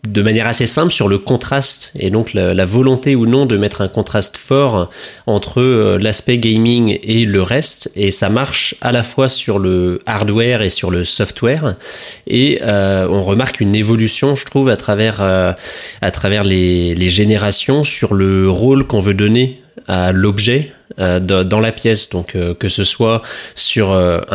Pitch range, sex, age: 95-115 Hz, male, 20-39